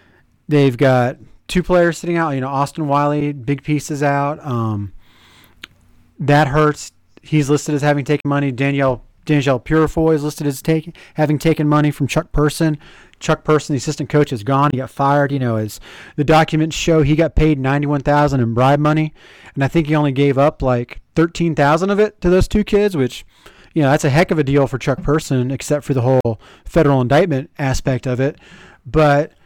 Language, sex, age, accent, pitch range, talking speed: English, male, 30-49, American, 135-160 Hz, 195 wpm